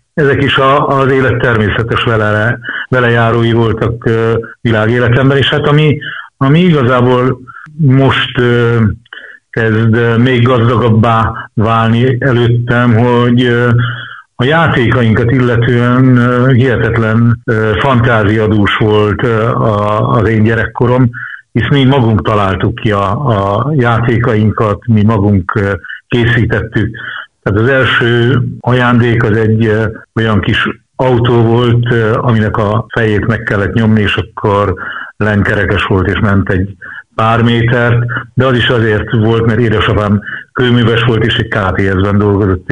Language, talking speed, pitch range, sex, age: Hungarian, 110 wpm, 110-125 Hz, male, 60-79